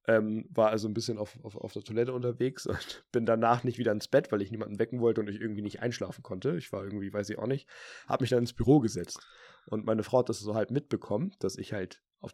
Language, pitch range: German, 100-125 Hz